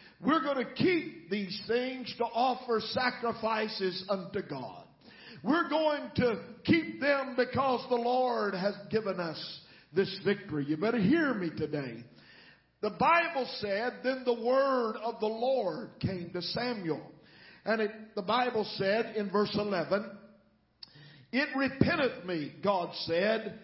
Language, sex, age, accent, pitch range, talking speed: English, male, 50-69, American, 200-260 Hz, 135 wpm